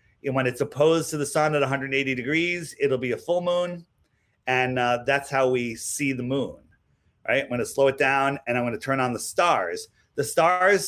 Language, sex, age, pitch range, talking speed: English, male, 30-49, 125-155 Hz, 220 wpm